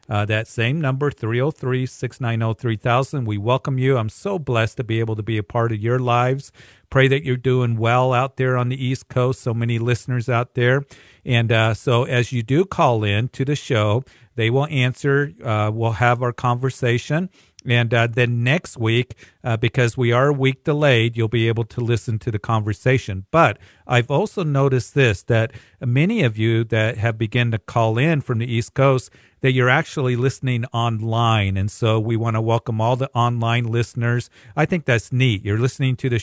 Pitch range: 110-130 Hz